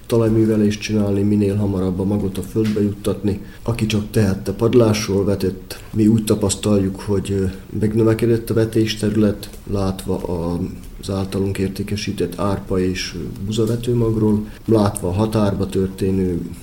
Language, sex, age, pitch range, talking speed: Hungarian, male, 30-49, 95-110 Hz, 115 wpm